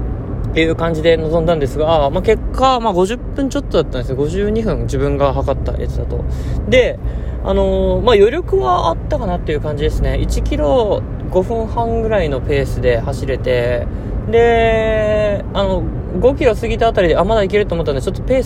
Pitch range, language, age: 95-140 Hz, Japanese, 20-39